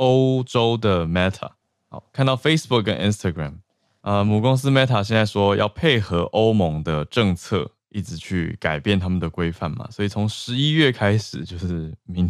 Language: Chinese